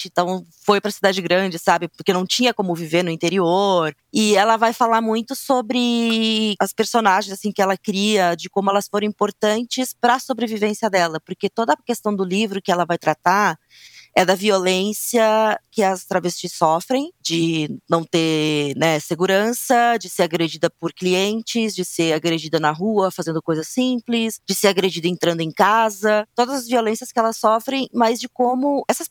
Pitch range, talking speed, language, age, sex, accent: 165-220 Hz, 175 wpm, Portuguese, 20-39, female, Brazilian